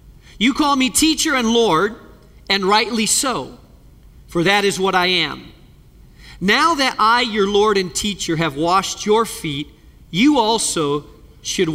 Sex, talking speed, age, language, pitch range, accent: male, 150 wpm, 40-59, English, 175-240 Hz, American